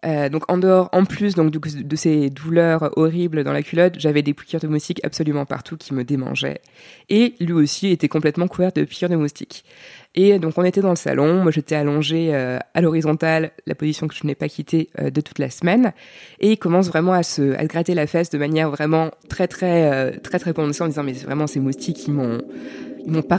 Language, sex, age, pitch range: French, female, 20-39, 150-195 Hz